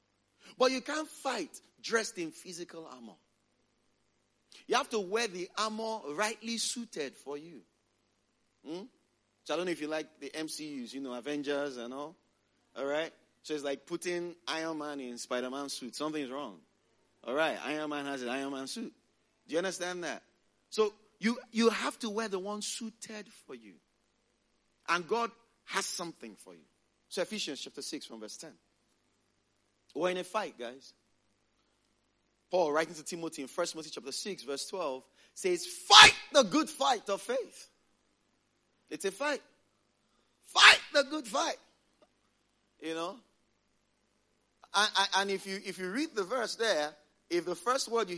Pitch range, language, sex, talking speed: 145-215 Hz, English, male, 160 wpm